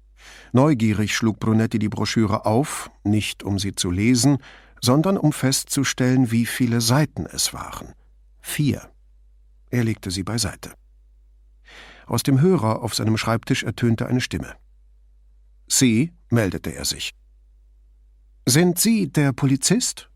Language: English